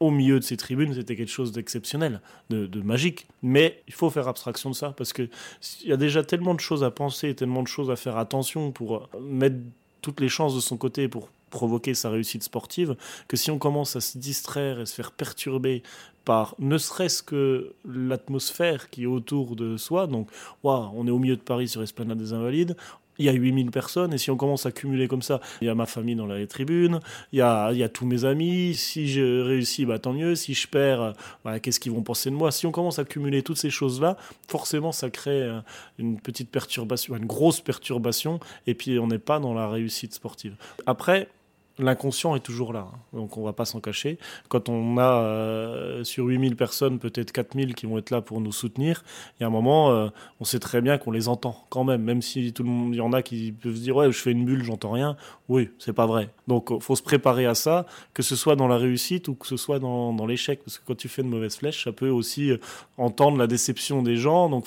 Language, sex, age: French, male, 30-49